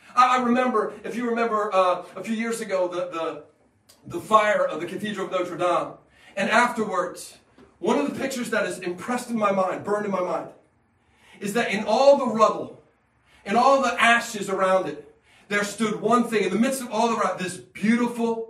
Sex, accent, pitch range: male, American, 175-225 Hz